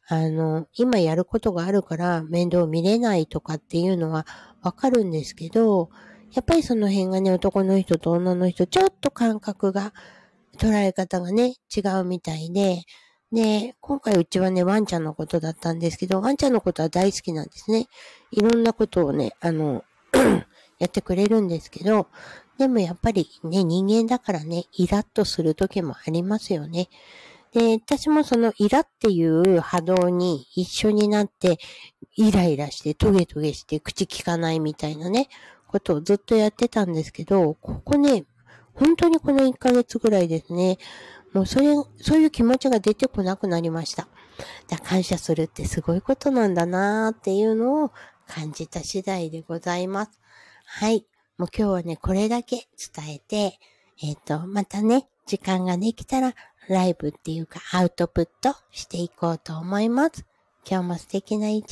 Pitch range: 170-225 Hz